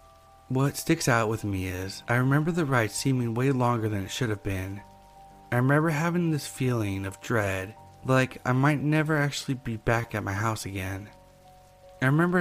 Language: English